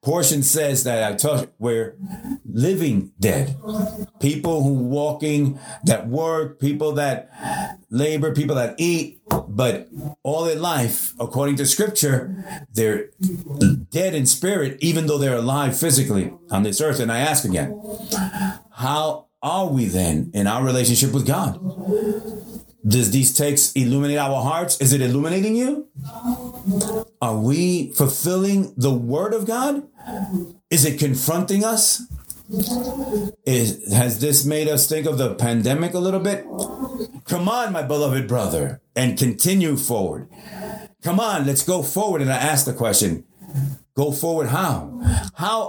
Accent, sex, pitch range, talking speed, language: American, male, 130-195 Hz, 140 wpm, English